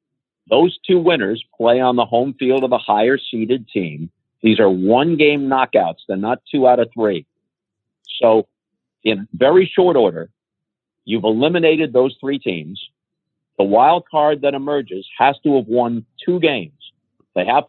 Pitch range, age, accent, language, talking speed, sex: 120-155 Hz, 50-69, American, English, 155 wpm, male